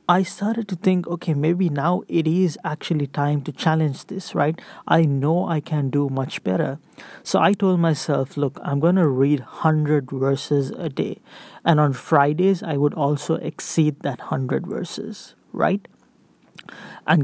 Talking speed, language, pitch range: 165 wpm, English, 150-185 Hz